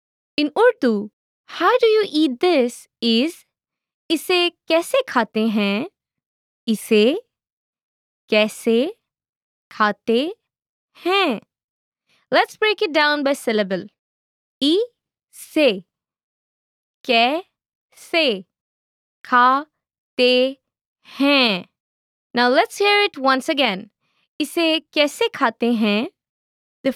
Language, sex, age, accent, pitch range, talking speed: English, female, 20-39, Indian, 230-330 Hz, 80 wpm